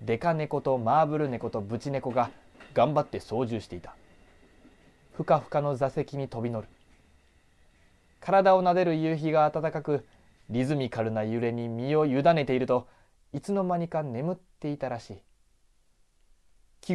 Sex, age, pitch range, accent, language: male, 20-39, 120-180 Hz, native, Japanese